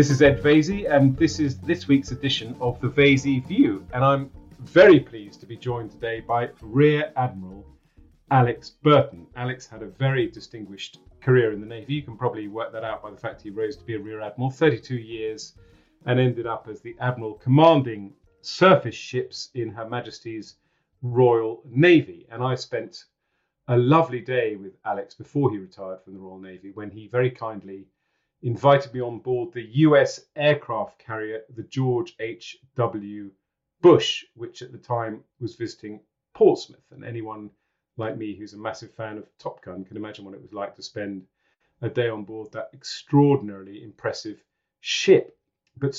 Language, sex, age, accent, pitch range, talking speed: English, male, 40-59, British, 105-135 Hz, 175 wpm